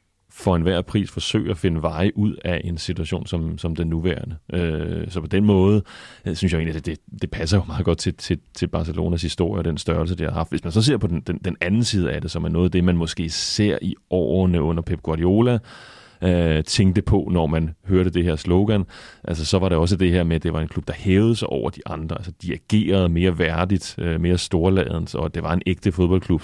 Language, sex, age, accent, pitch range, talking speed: Danish, male, 30-49, native, 85-95 Hz, 245 wpm